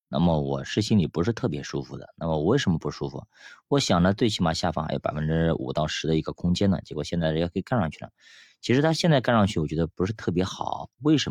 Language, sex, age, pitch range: Chinese, male, 20-39, 80-110 Hz